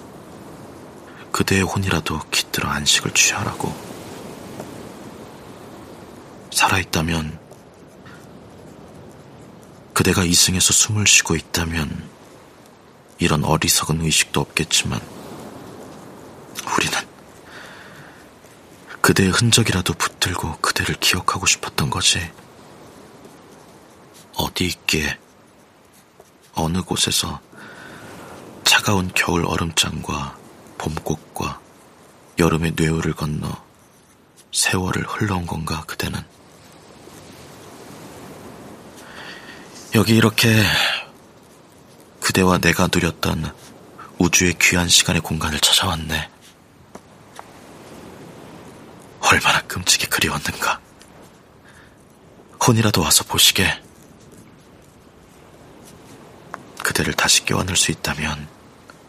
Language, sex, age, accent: Korean, male, 40-59, native